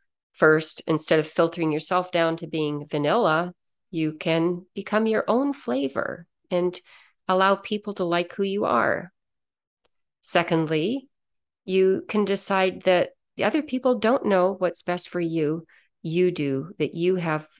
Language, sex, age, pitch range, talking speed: English, female, 40-59, 160-195 Hz, 145 wpm